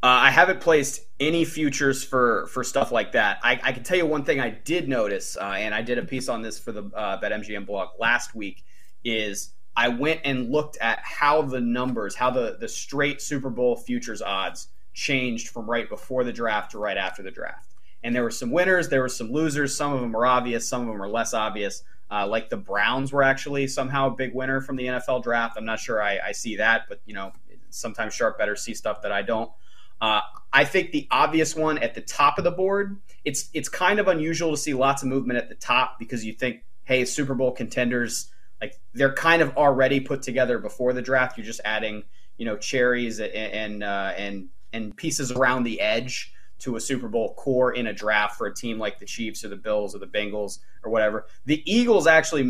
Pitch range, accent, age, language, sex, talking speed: 115-145 Hz, American, 30-49, English, male, 225 wpm